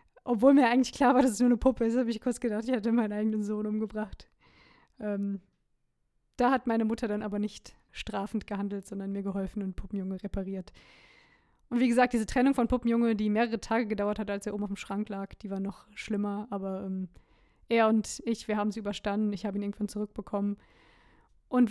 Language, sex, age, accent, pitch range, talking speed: German, female, 20-39, German, 210-250 Hz, 205 wpm